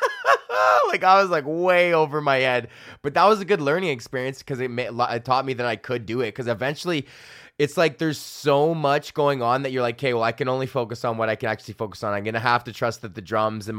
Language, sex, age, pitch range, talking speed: English, male, 20-39, 115-145 Hz, 255 wpm